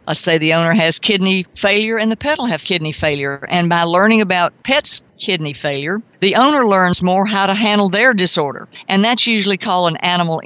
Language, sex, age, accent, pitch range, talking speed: English, female, 50-69, American, 170-210 Hz, 205 wpm